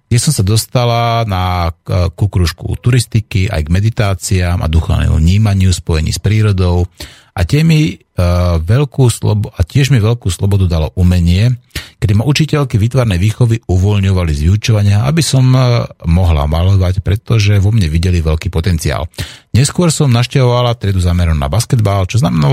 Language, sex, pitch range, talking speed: Slovak, male, 90-120 Hz, 145 wpm